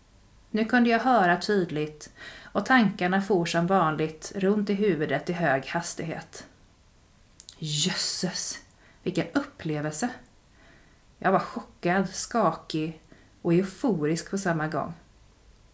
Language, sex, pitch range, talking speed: Swedish, female, 155-195 Hz, 105 wpm